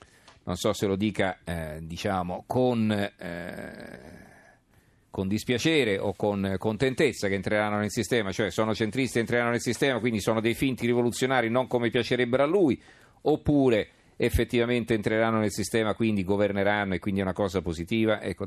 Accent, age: native, 50-69